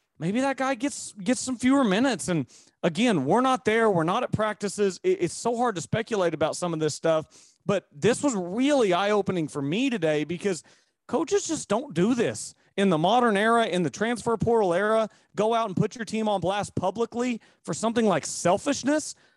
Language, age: English, 30-49